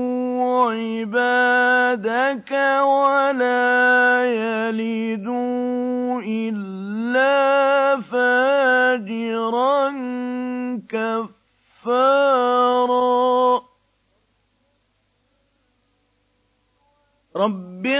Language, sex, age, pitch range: Arabic, male, 50-69, 225-275 Hz